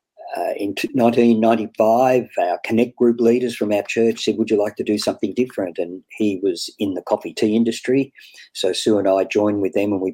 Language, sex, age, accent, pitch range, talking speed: English, male, 50-69, Australian, 100-130 Hz, 205 wpm